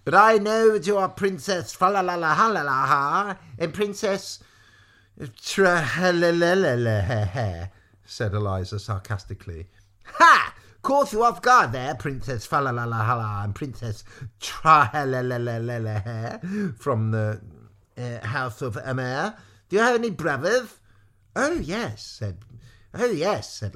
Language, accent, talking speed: English, British, 140 wpm